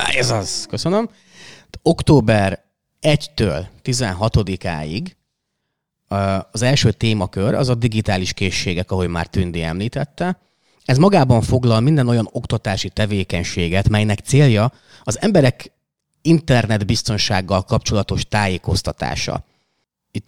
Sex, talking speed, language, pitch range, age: male, 95 wpm, Hungarian, 95-125 Hz, 30-49